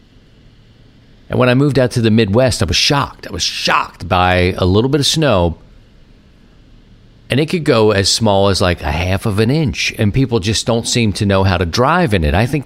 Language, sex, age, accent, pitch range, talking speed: English, male, 50-69, American, 95-120 Hz, 225 wpm